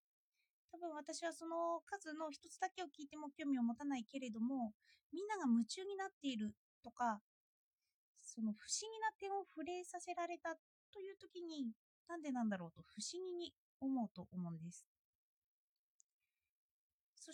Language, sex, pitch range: Japanese, female, 240-345 Hz